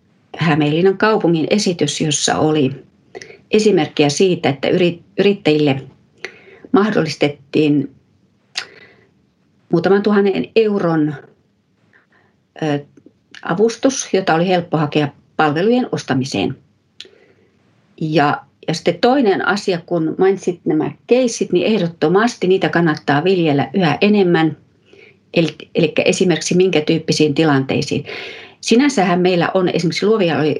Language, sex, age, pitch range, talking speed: Finnish, female, 40-59, 145-200 Hz, 90 wpm